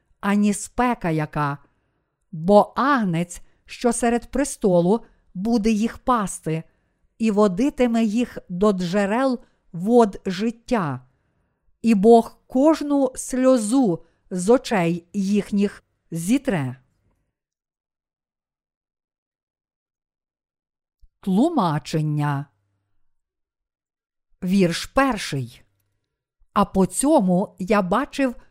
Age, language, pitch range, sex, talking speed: 50-69, Ukrainian, 175-245 Hz, female, 70 wpm